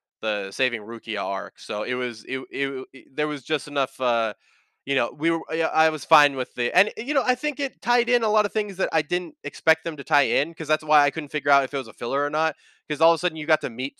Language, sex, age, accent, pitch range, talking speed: English, male, 20-39, American, 110-145 Hz, 285 wpm